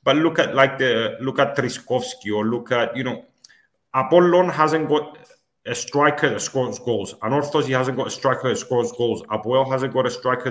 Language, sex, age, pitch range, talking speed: English, male, 30-49, 115-135 Hz, 195 wpm